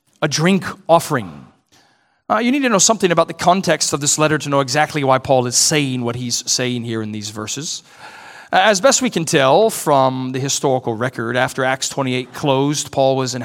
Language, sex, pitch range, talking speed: English, male, 135-175 Hz, 200 wpm